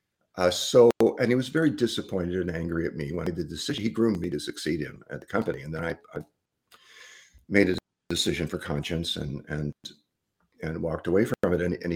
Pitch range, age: 80-115 Hz, 50-69